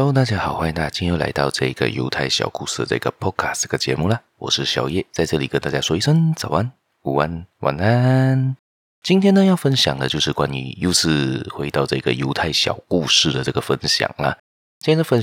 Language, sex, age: Chinese, male, 30-49